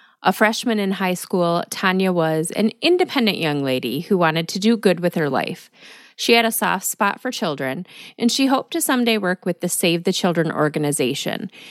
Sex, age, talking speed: female, 30-49, 195 wpm